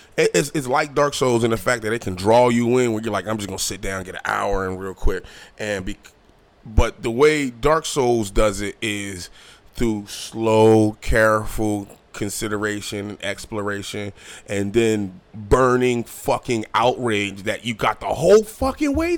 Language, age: English, 20-39